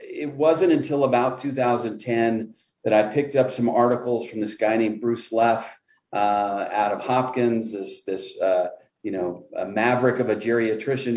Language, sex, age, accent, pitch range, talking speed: English, male, 40-59, American, 105-130 Hz, 165 wpm